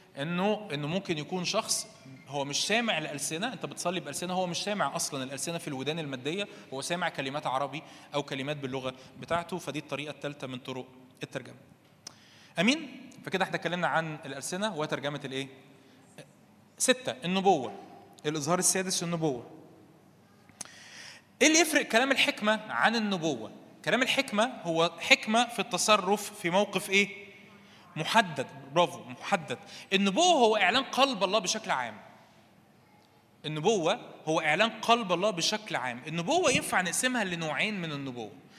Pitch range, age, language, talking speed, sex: 150-215 Hz, 20-39, Arabic, 130 wpm, male